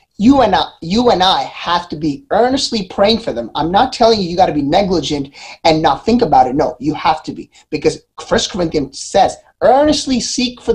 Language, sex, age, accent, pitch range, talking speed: English, male, 30-49, American, 170-240 Hz, 220 wpm